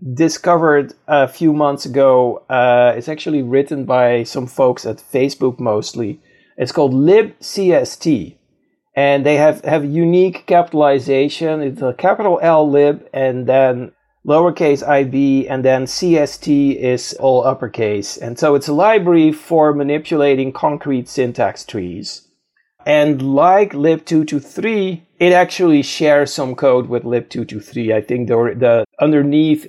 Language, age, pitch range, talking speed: English, 40-59, 125-160 Hz, 130 wpm